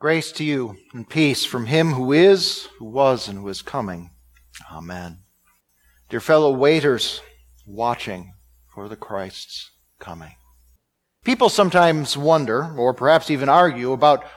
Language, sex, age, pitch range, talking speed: English, male, 50-69, 110-175 Hz, 135 wpm